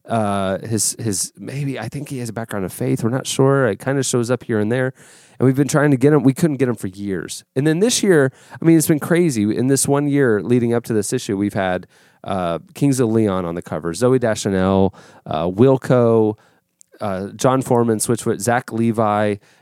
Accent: American